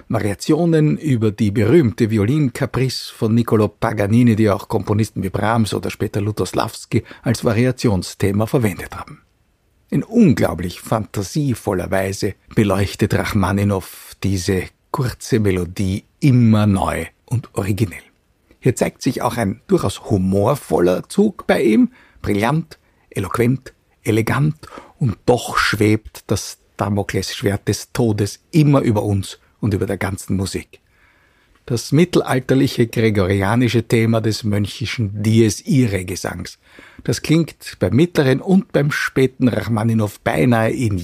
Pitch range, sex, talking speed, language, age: 100-125 Hz, male, 115 wpm, German, 60-79